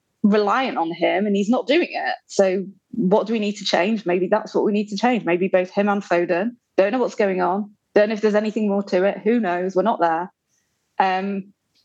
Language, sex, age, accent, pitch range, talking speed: English, female, 20-39, British, 185-250 Hz, 235 wpm